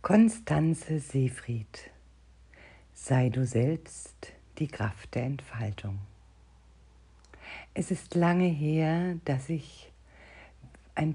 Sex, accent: female, German